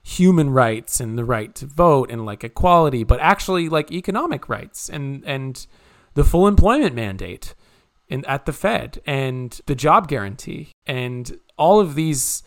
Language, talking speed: English, 160 wpm